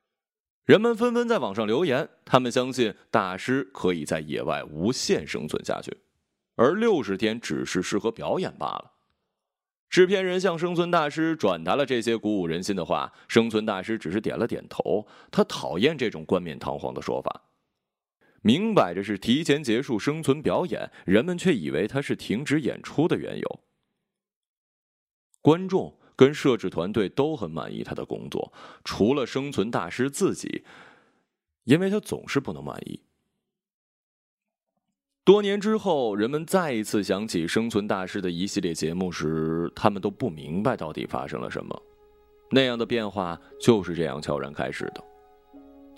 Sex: male